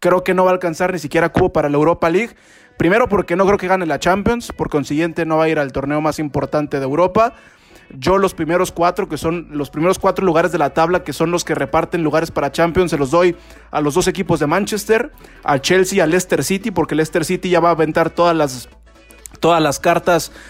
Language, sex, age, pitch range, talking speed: Spanish, male, 20-39, 155-190 Hz, 235 wpm